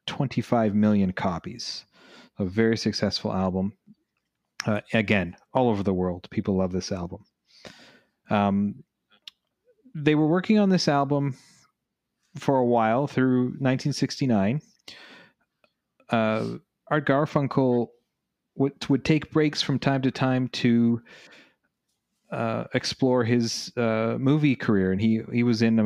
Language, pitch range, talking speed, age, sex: English, 105-135 Hz, 125 wpm, 30-49, male